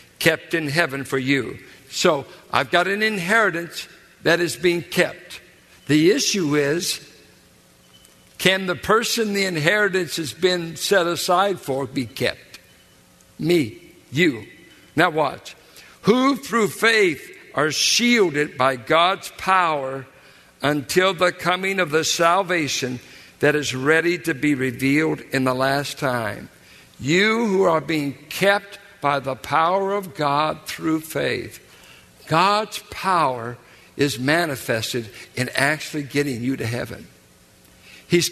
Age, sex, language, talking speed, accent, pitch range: 60-79, male, English, 125 wpm, American, 140-190 Hz